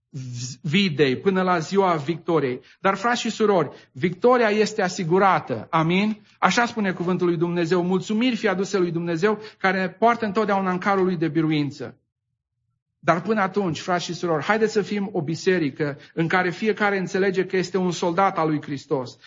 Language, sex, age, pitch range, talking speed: English, male, 40-59, 160-195 Hz, 165 wpm